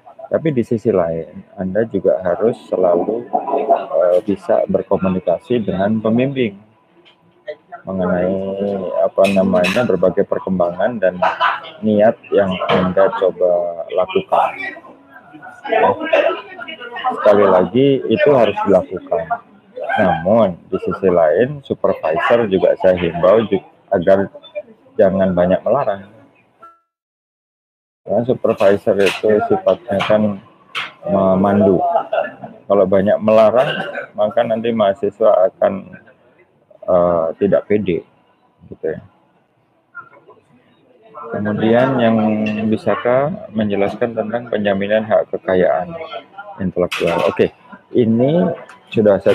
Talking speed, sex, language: 90 wpm, male, Indonesian